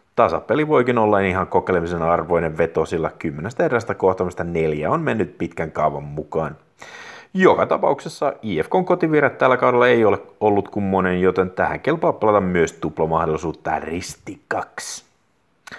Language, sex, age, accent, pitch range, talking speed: Finnish, male, 30-49, native, 80-110 Hz, 130 wpm